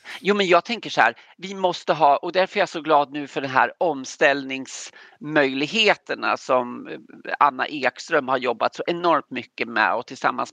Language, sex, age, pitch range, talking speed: Swedish, male, 40-59, 140-190 Hz, 175 wpm